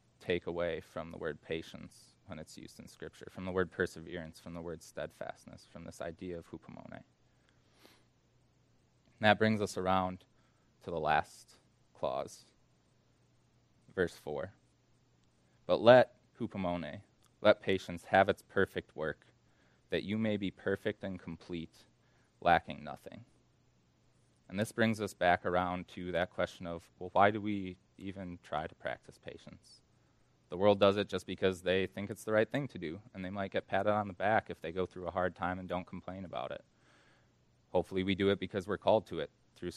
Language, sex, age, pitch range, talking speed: English, male, 20-39, 90-100 Hz, 175 wpm